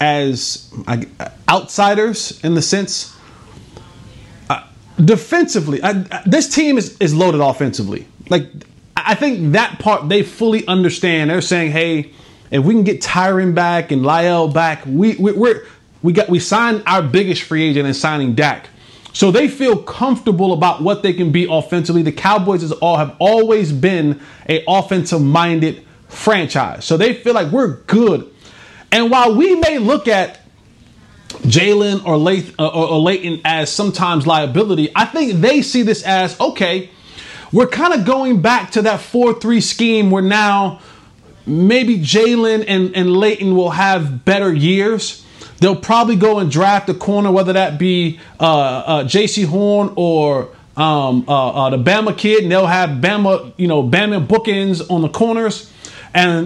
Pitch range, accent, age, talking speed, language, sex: 155-215 Hz, American, 30-49, 160 wpm, English, male